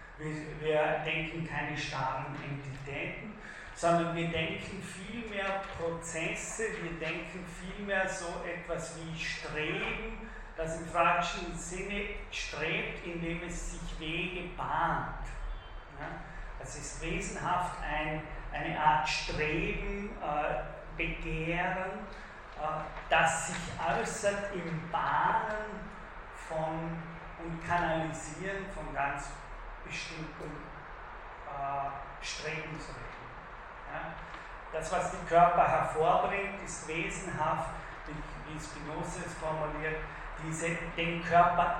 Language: German